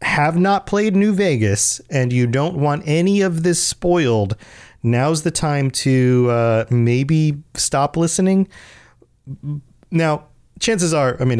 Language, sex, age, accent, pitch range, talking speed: English, male, 30-49, American, 110-145 Hz, 135 wpm